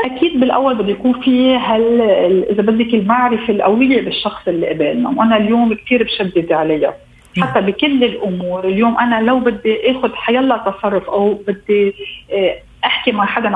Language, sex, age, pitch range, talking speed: Arabic, female, 40-59, 205-260 Hz, 150 wpm